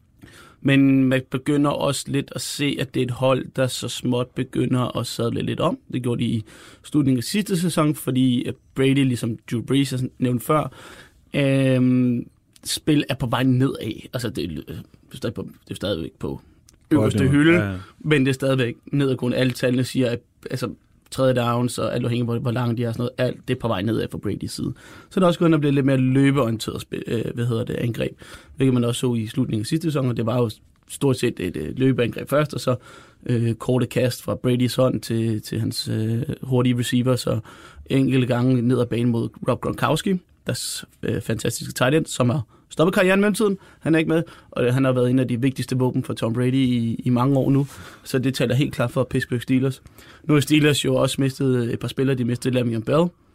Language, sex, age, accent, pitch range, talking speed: Danish, male, 30-49, native, 120-135 Hz, 215 wpm